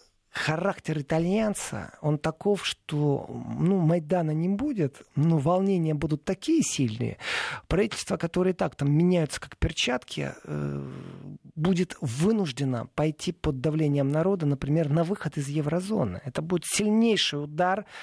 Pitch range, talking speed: 140-180 Hz, 125 wpm